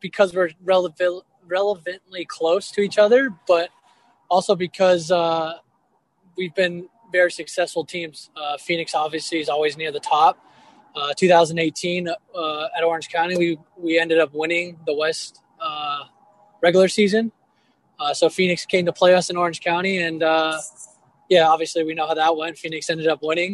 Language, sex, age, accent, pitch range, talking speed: English, male, 20-39, American, 160-190 Hz, 165 wpm